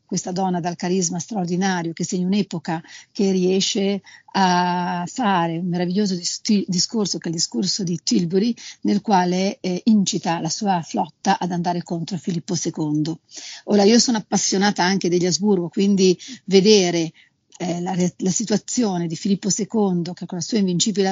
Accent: native